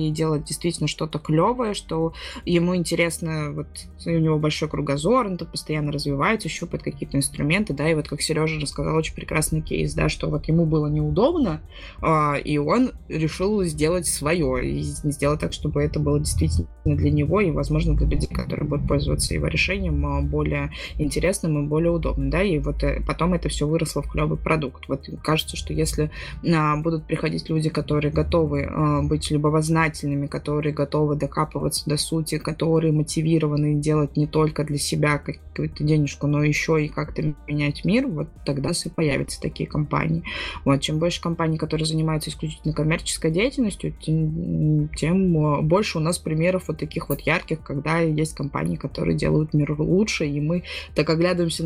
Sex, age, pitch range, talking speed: female, 20-39, 145-165 Hz, 165 wpm